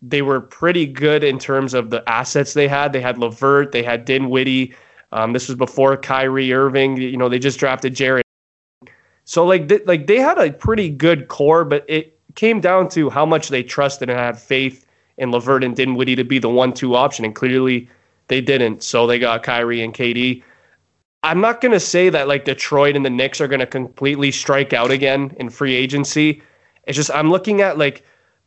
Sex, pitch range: male, 130-145 Hz